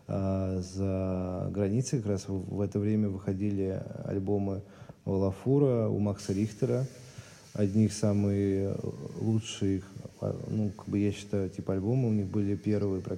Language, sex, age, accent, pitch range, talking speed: Russian, male, 20-39, native, 100-125 Hz, 125 wpm